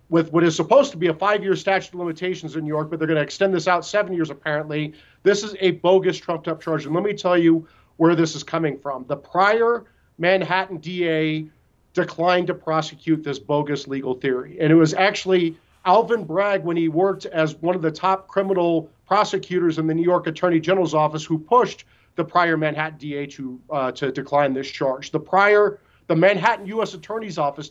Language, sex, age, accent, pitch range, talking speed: English, male, 40-59, American, 150-180 Hz, 200 wpm